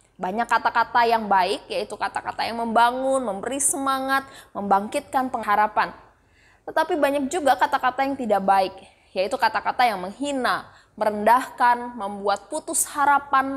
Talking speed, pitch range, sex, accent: 120 wpm, 195-255 Hz, female, native